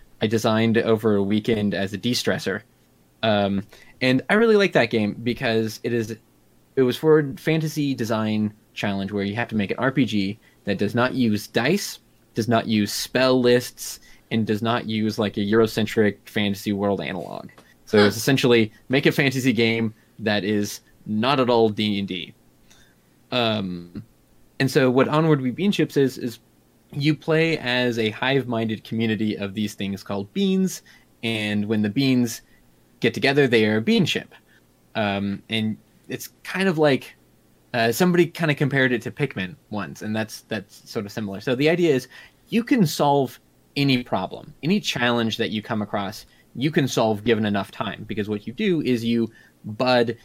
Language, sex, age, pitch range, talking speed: English, male, 20-39, 105-130 Hz, 175 wpm